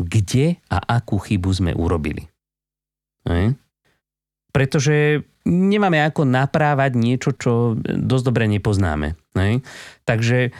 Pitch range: 95-130 Hz